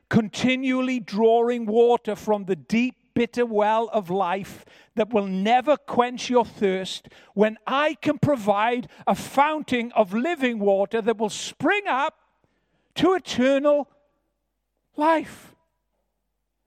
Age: 50-69